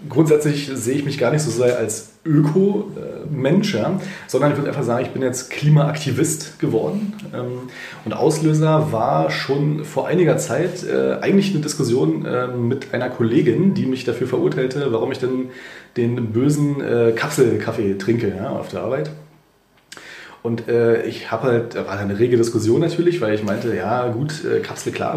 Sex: male